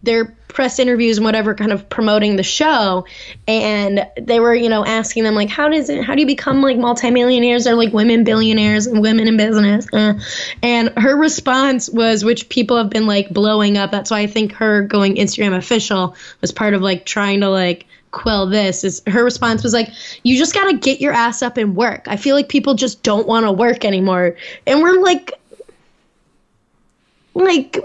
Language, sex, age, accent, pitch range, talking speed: English, female, 10-29, American, 215-260 Hz, 200 wpm